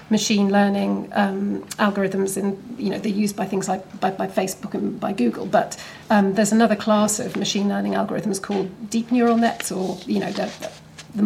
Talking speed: 190 wpm